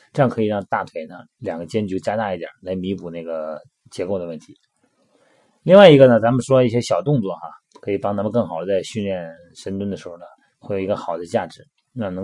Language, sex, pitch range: Chinese, male, 95-130 Hz